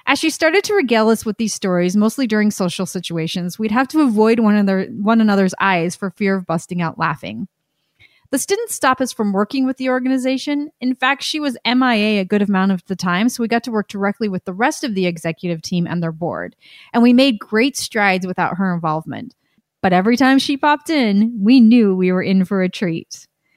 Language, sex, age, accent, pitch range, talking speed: English, female, 30-49, American, 190-270 Hz, 215 wpm